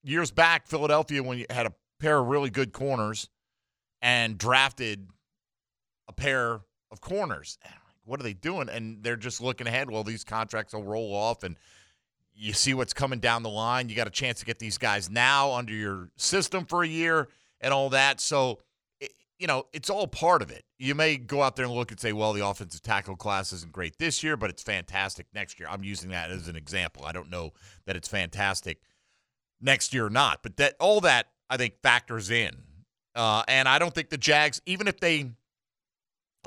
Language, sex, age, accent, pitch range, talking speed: English, male, 40-59, American, 100-135 Hz, 205 wpm